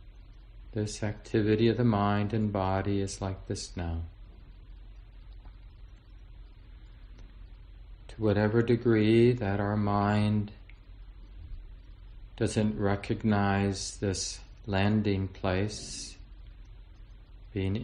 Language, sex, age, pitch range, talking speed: English, male, 40-59, 95-105 Hz, 75 wpm